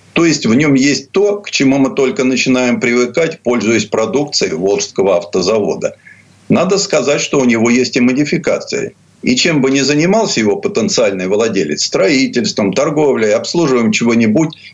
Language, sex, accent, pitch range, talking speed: Russian, male, native, 115-165 Hz, 150 wpm